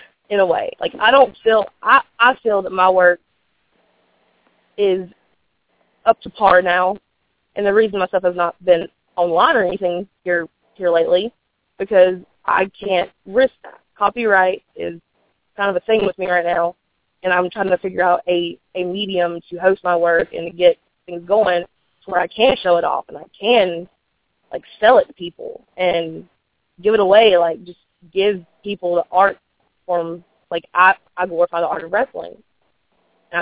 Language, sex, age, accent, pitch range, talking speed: English, female, 20-39, American, 175-215 Hz, 180 wpm